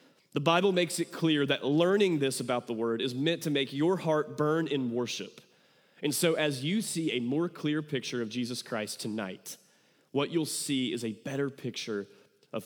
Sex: male